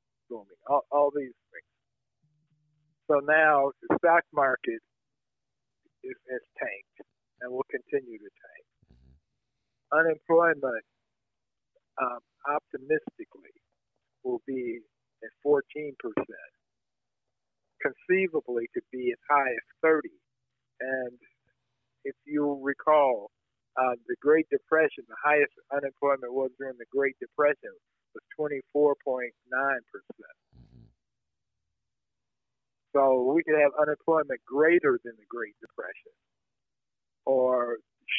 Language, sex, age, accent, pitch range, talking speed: English, male, 50-69, American, 130-185 Hz, 95 wpm